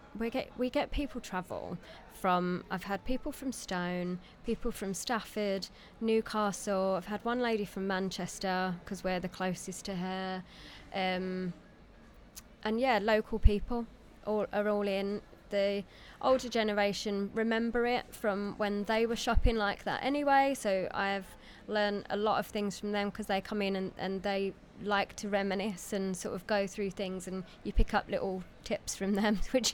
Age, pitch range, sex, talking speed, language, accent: 20-39, 190-225 Hz, female, 170 wpm, English, British